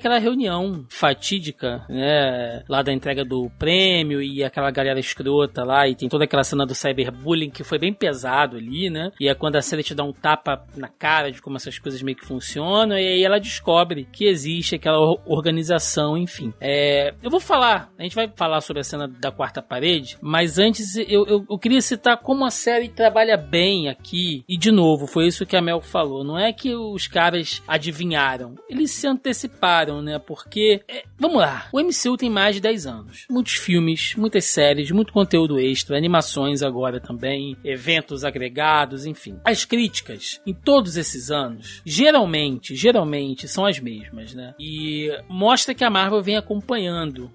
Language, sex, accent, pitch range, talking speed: Portuguese, male, Brazilian, 140-200 Hz, 180 wpm